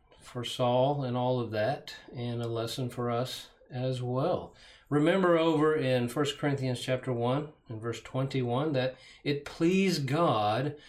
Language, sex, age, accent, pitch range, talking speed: English, male, 40-59, American, 120-150 Hz, 150 wpm